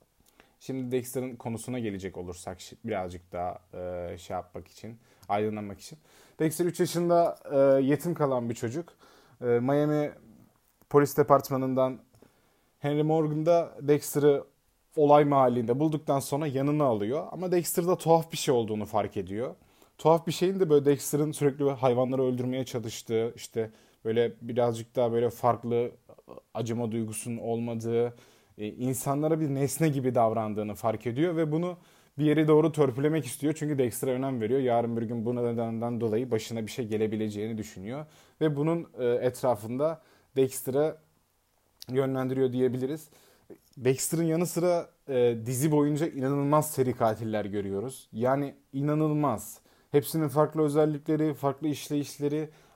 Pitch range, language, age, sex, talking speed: 115-150 Hz, Turkish, 20-39, male, 125 wpm